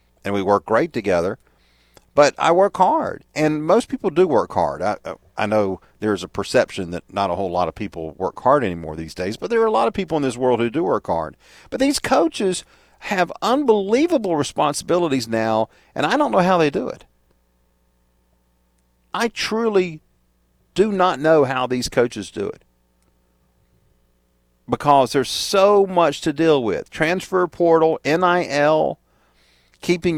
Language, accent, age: English, American, 50-69